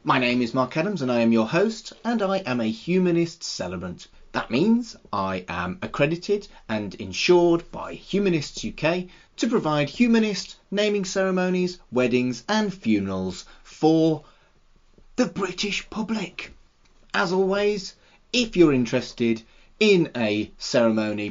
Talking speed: 130 wpm